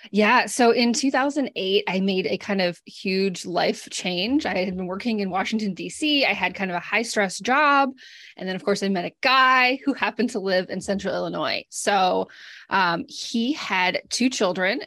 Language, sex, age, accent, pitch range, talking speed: English, female, 20-39, American, 200-255 Hz, 195 wpm